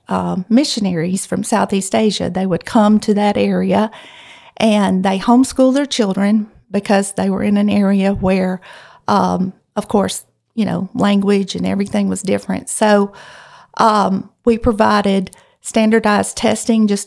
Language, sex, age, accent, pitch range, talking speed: English, female, 50-69, American, 195-220 Hz, 140 wpm